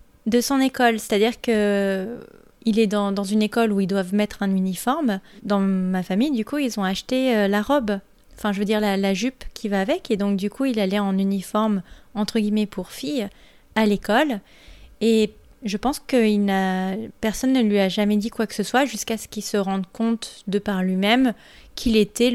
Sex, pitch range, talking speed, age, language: female, 195-230 Hz, 210 wpm, 20-39, English